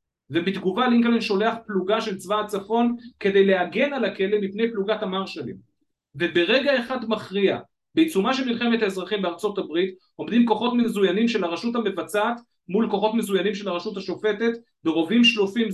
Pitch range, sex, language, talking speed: 180-230 Hz, male, Hebrew, 140 wpm